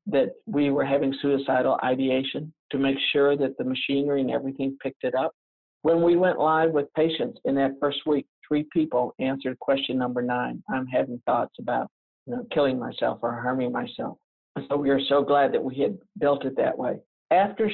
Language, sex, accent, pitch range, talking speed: English, male, American, 135-150 Hz, 195 wpm